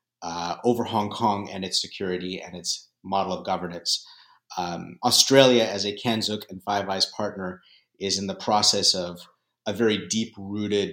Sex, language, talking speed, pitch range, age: male, English, 160 wpm, 90-110 Hz, 30-49